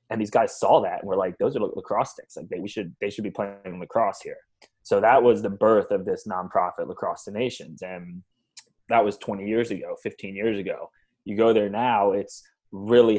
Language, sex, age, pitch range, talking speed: English, male, 20-39, 100-130 Hz, 220 wpm